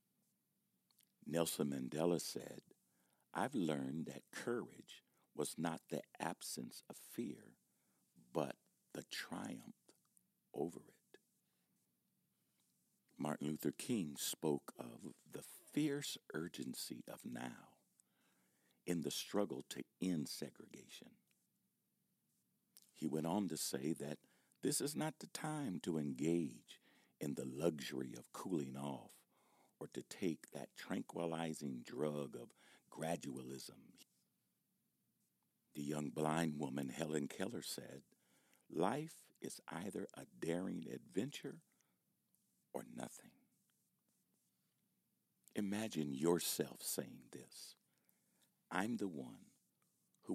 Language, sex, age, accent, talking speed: English, male, 60-79, American, 100 wpm